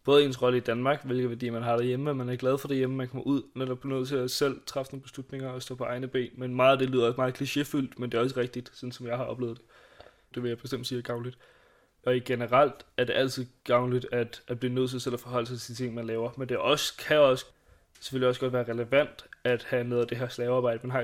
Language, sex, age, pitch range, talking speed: Danish, male, 20-39, 125-130 Hz, 290 wpm